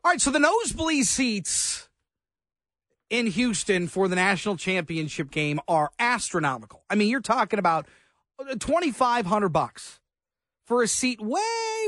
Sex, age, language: male, 40-59, English